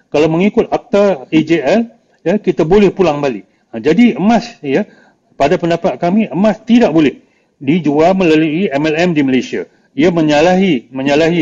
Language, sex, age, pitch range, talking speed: Malay, male, 40-59, 150-210 Hz, 140 wpm